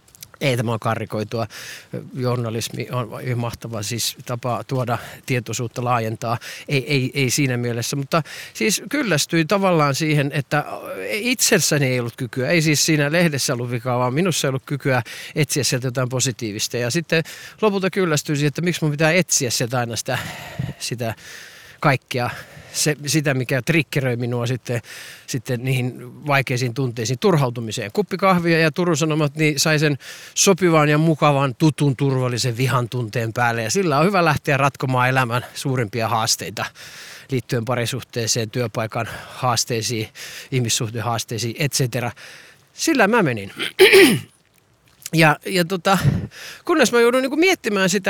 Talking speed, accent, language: 135 wpm, native, Finnish